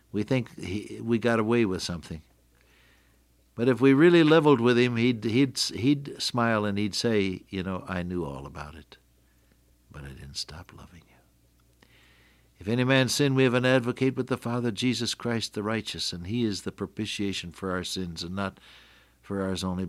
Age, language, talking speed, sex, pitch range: 60-79, English, 185 wpm, male, 75-115 Hz